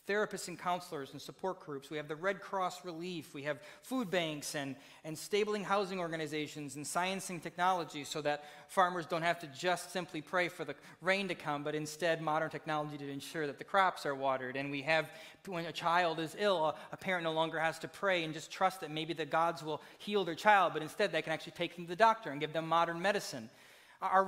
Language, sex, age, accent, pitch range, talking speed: English, male, 30-49, American, 155-190 Hz, 230 wpm